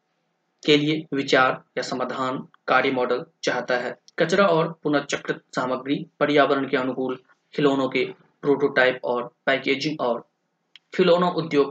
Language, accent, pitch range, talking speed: Hindi, native, 130-170 Hz, 115 wpm